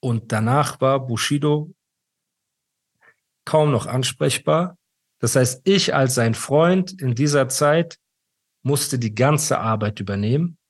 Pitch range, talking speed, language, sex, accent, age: 120-145 Hz, 120 wpm, German, male, German, 40-59